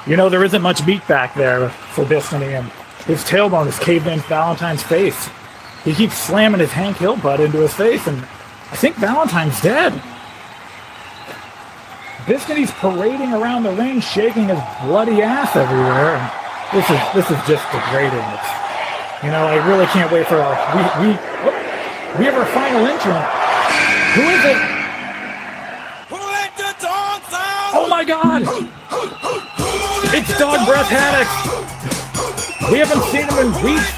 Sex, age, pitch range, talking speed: male, 30-49, 160-265 Hz, 140 wpm